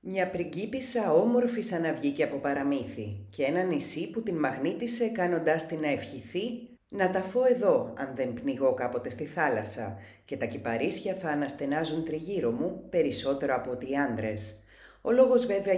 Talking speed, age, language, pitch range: 165 wpm, 30-49, Greek, 125-195 Hz